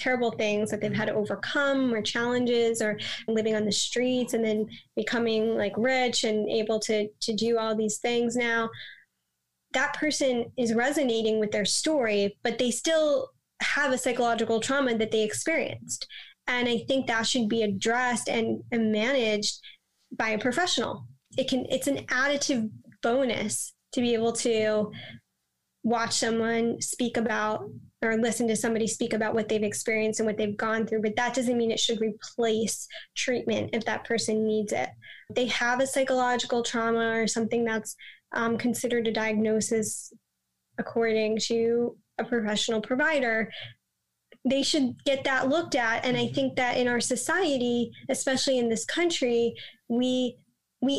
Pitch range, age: 220-255 Hz, 10-29